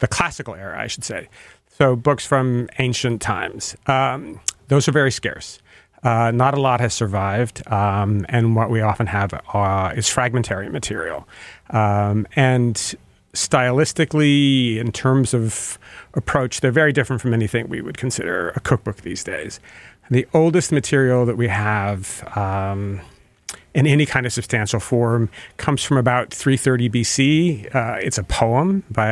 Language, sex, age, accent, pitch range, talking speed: English, male, 40-59, American, 110-135 Hz, 150 wpm